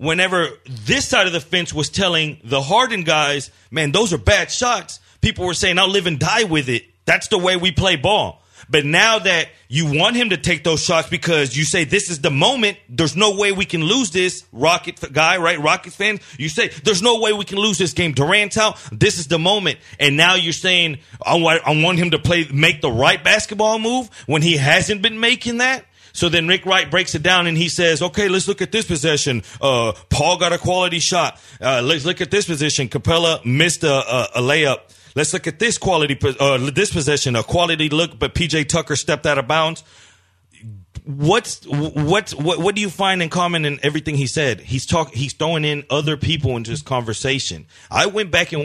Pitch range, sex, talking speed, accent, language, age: 145-185 Hz, male, 215 wpm, American, English, 30-49